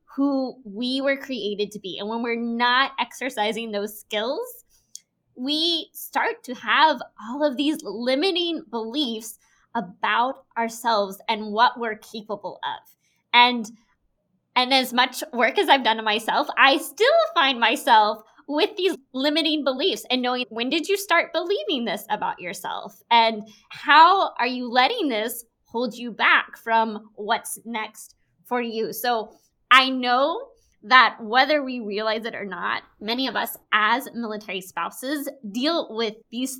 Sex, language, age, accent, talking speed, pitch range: female, English, 20-39, American, 150 wpm, 215-280 Hz